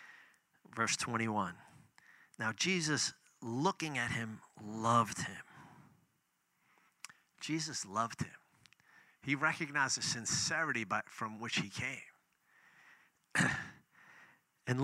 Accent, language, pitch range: American, English, 125-170 Hz